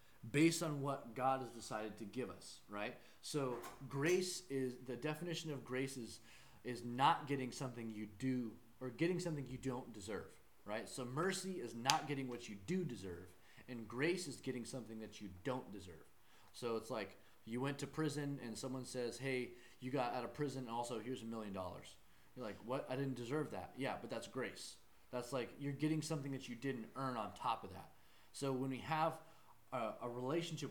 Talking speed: 195 wpm